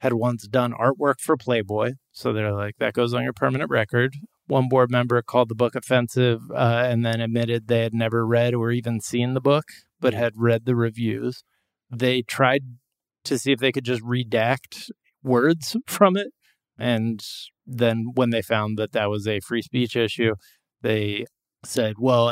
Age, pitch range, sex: 30-49, 110-130 Hz, male